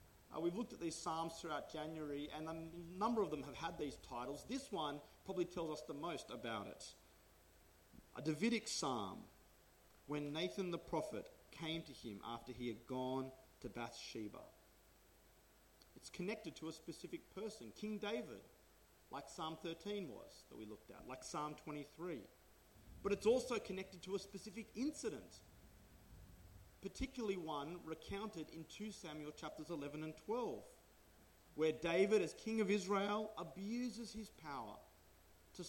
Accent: Australian